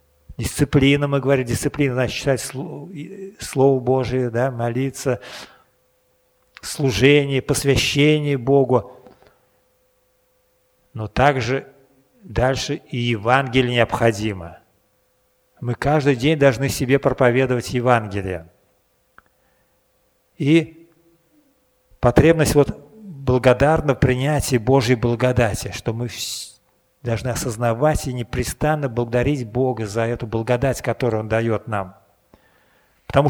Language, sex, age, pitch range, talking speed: Russian, male, 50-69, 115-145 Hz, 90 wpm